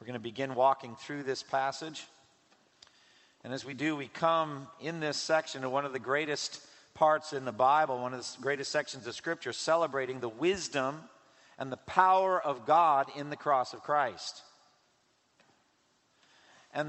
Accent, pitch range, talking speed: American, 140-175 Hz, 165 wpm